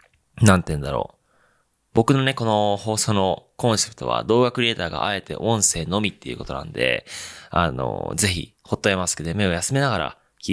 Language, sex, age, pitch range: Japanese, male, 20-39, 85-115 Hz